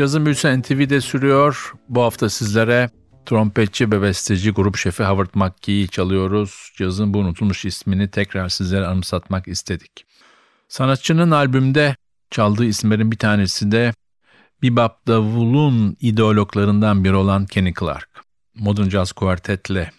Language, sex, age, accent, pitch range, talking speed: Turkish, male, 50-69, native, 95-110 Hz, 115 wpm